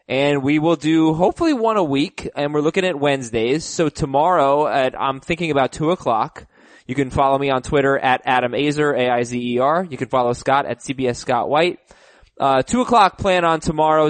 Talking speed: 190 wpm